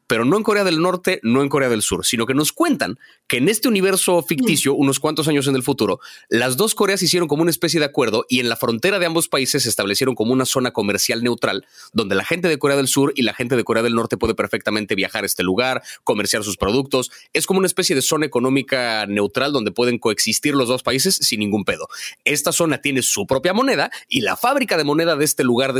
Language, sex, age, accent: Spanish, male, 30-49, Mexican